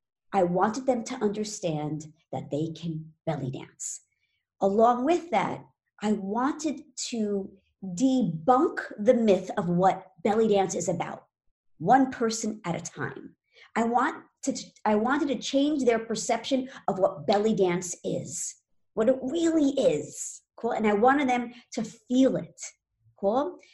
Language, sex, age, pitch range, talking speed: English, male, 50-69, 180-265 Hz, 145 wpm